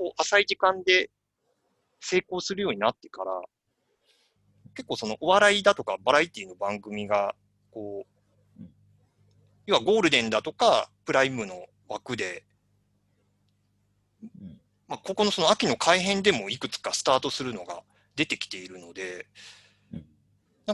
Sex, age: male, 30-49